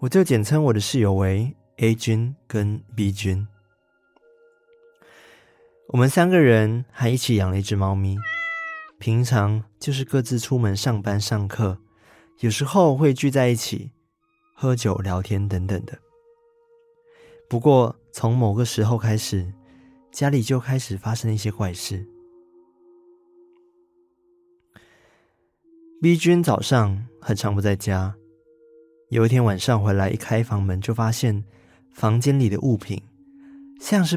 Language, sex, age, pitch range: Chinese, male, 20-39, 105-160 Hz